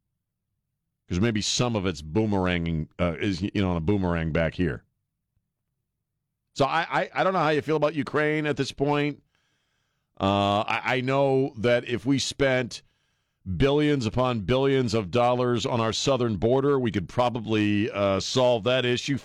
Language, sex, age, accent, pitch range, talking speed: English, male, 50-69, American, 110-135 Hz, 165 wpm